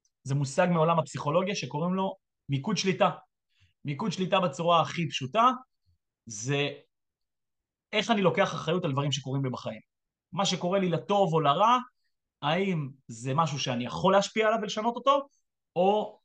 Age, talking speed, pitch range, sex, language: 30-49, 145 wpm, 140-190 Hz, male, Hebrew